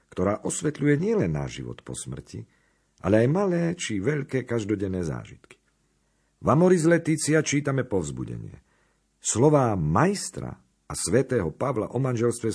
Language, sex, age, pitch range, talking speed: Slovak, male, 50-69, 85-130 Hz, 125 wpm